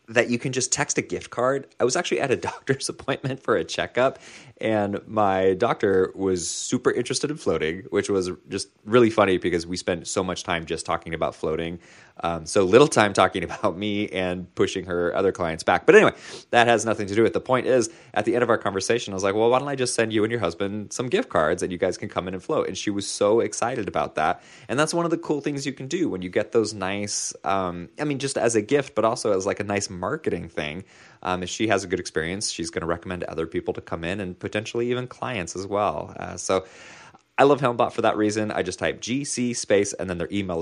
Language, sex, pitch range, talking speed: English, male, 90-125 Hz, 255 wpm